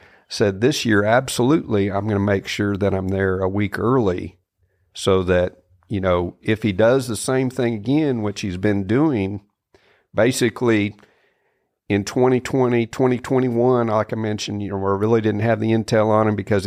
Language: English